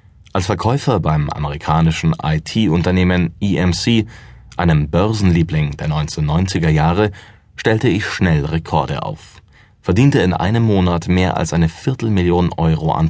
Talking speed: 120 wpm